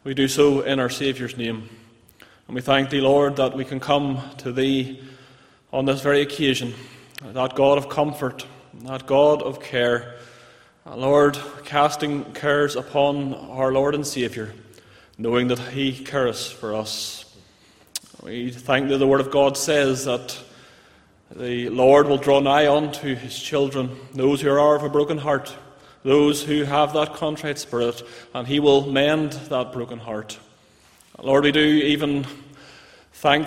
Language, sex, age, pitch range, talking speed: English, male, 20-39, 130-145 Hz, 155 wpm